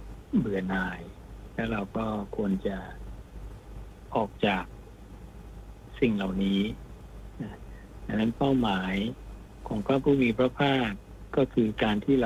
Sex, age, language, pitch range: male, 60-79, Thai, 100-115 Hz